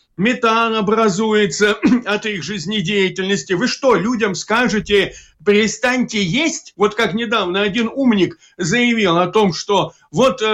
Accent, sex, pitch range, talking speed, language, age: native, male, 195-250 Hz, 120 wpm, Russian, 50-69